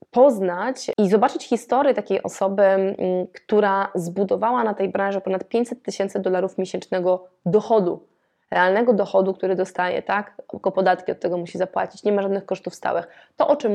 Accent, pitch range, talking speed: native, 180-210 Hz, 155 wpm